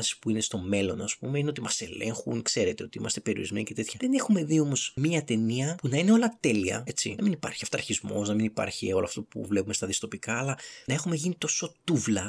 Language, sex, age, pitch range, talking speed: Greek, male, 30-49, 110-140 Hz, 230 wpm